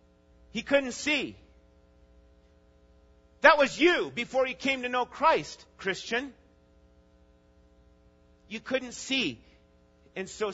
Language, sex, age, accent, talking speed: English, male, 40-59, American, 100 wpm